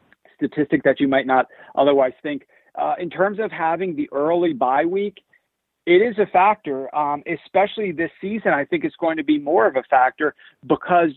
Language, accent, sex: English, American, male